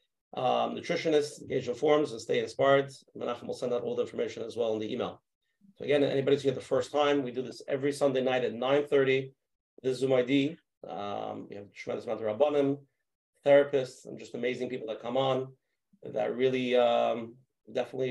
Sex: male